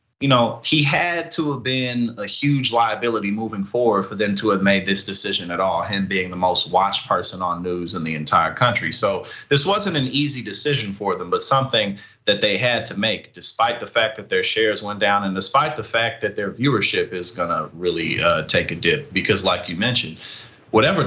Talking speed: 210 wpm